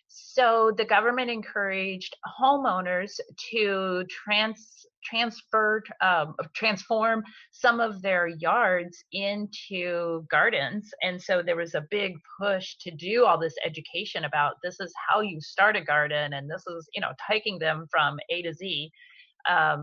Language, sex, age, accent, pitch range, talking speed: English, female, 30-49, American, 170-225 Hz, 140 wpm